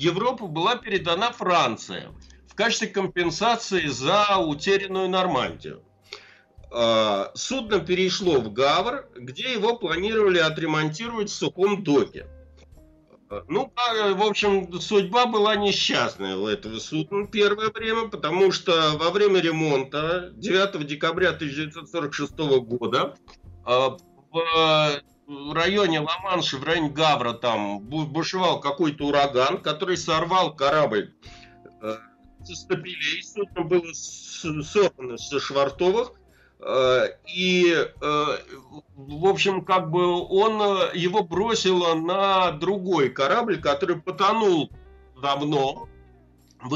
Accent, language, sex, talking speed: native, Russian, male, 100 wpm